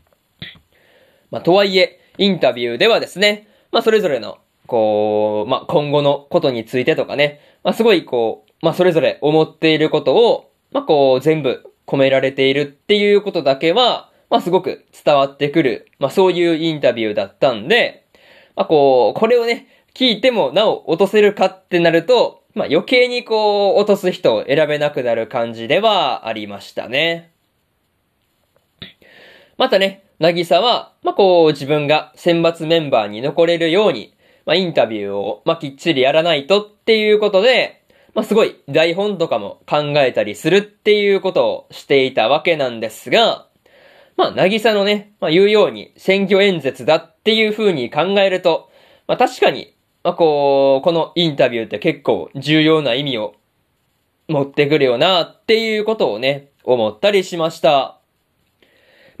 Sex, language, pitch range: male, Japanese, 145-200 Hz